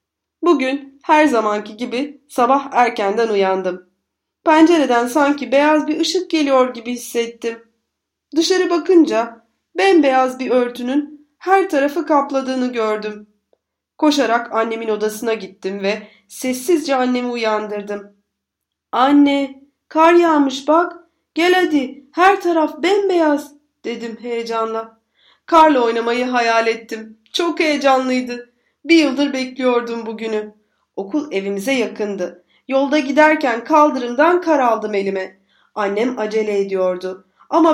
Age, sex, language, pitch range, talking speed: 30-49, female, Turkish, 230-315 Hz, 105 wpm